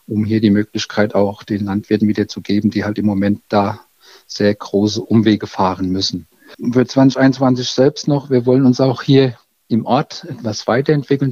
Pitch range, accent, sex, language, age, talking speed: 105-125 Hz, German, male, German, 50-69, 180 wpm